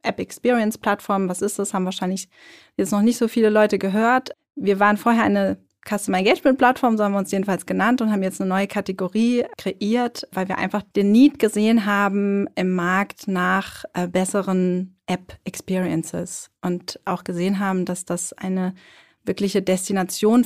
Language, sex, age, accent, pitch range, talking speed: German, female, 30-49, German, 185-215 Hz, 155 wpm